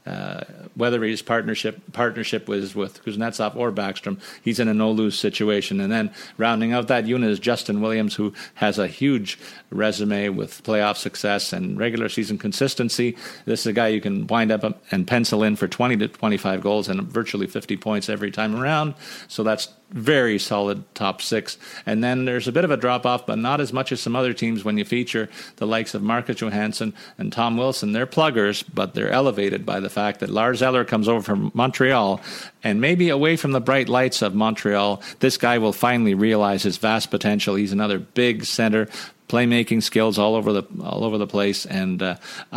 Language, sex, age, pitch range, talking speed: English, male, 40-59, 105-120 Hz, 195 wpm